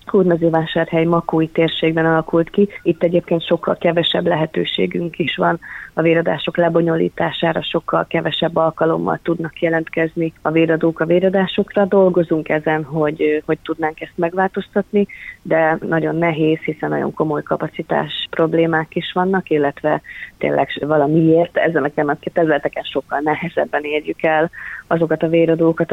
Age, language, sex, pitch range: 30-49, Hungarian, female, 160-180 Hz